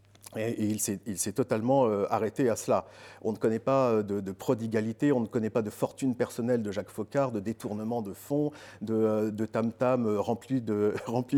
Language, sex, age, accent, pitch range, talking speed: French, male, 50-69, French, 110-130 Hz, 180 wpm